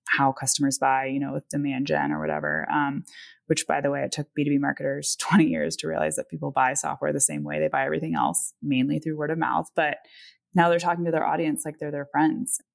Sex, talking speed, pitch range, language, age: female, 235 wpm, 140-190 Hz, English, 20-39